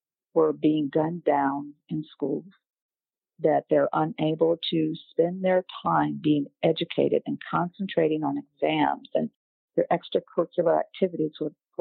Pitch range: 150-190 Hz